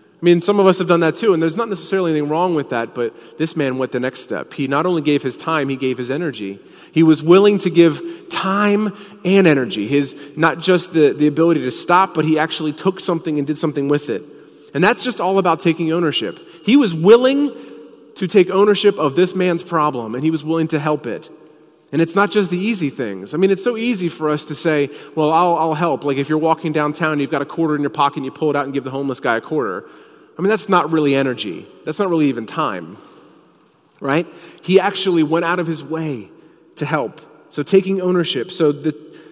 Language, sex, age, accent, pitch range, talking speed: English, male, 30-49, American, 145-190 Hz, 235 wpm